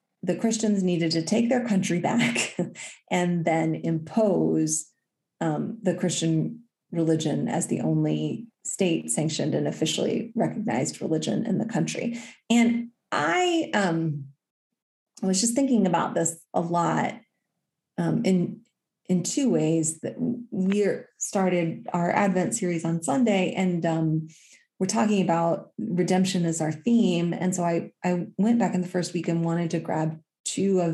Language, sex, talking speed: English, female, 145 wpm